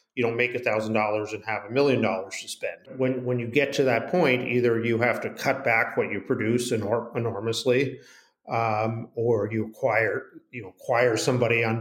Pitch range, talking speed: 110-130 Hz, 200 wpm